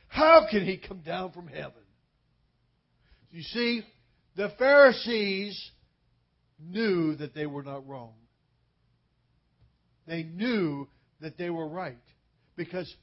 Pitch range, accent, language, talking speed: 140-195 Hz, American, English, 110 wpm